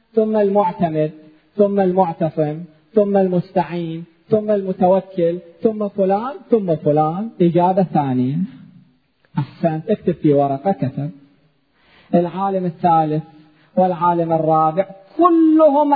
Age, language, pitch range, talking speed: 40-59, Arabic, 160-215 Hz, 90 wpm